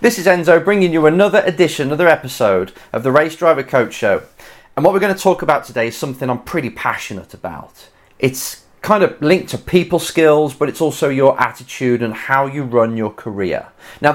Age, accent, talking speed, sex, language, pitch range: 30-49, British, 205 wpm, male, English, 120-170 Hz